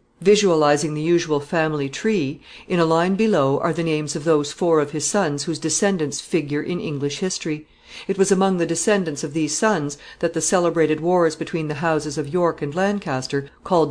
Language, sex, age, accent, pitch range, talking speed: English, female, 50-69, American, 145-180 Hz, 190 wpm